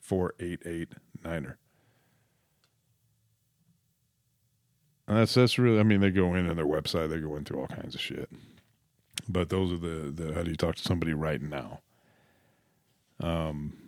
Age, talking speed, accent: 40-59, 165 wpm, American